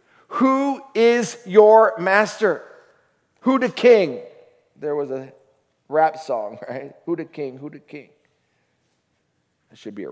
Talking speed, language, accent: 135 wpm, English, American